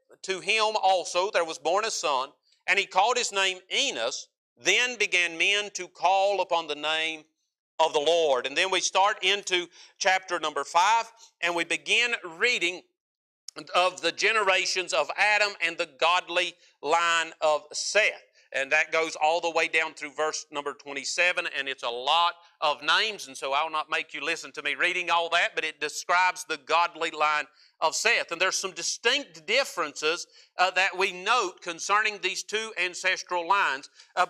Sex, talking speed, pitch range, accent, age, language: male, 175 wpm, 170-210 Hz, American, 50-69, English